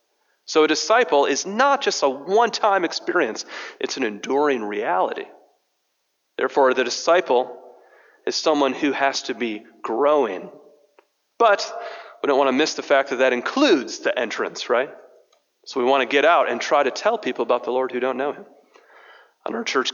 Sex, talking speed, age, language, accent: male, 175 wpm, 40-59, English, American